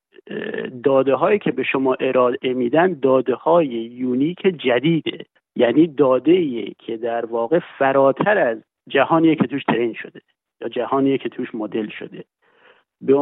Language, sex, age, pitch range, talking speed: Persian, male, 50-69, 125-155 Hz, 130 wpm